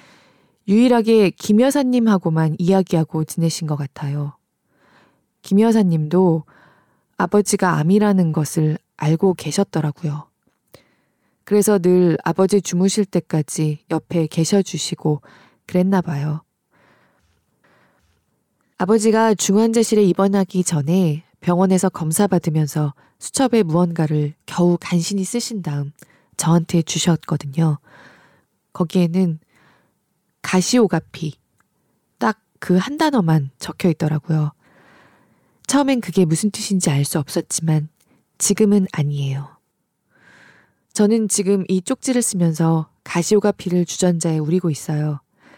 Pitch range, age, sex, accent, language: 155-200 Hz, 20-39, female, native, Korean